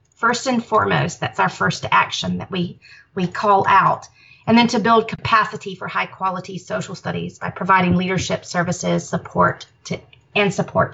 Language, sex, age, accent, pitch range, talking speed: English, female, 30-49, American, 170-210 Hz, 165 wpm